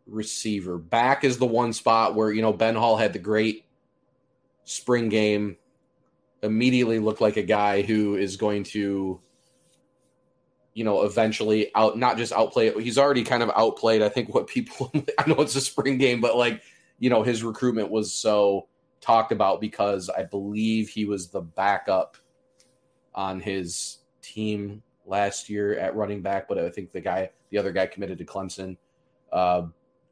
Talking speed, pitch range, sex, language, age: 170 wpm, 105-130 Hz, male, English, 20-39